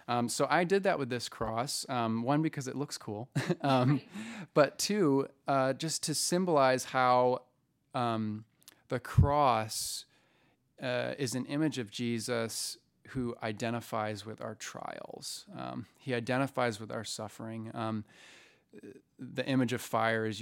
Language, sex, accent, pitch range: English, male, American, 110-130 Hz